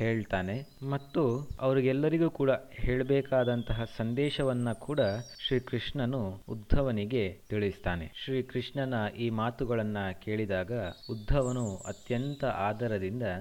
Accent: native